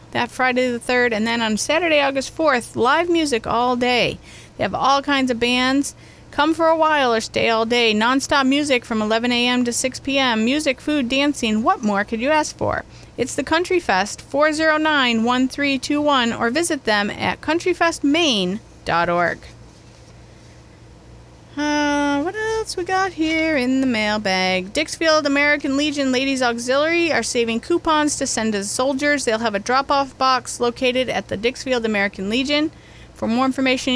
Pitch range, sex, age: 230-295 Hz, female, 30-49